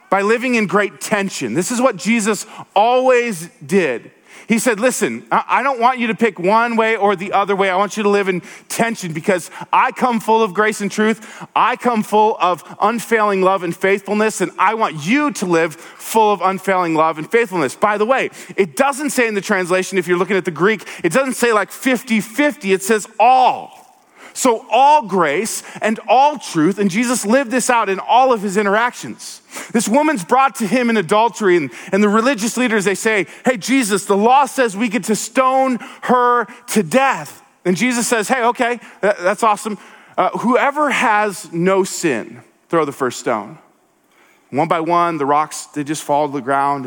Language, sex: English, male